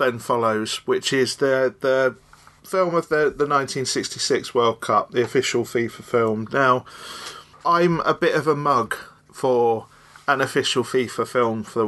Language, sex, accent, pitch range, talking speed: English, male, British, 115-145 Hz, 155 wpm